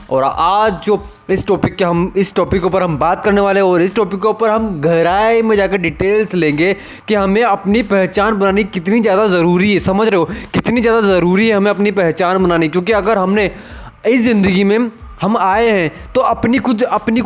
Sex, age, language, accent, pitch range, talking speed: male, 20-39, Hindi, native, 175-215 Hz, 205 wpm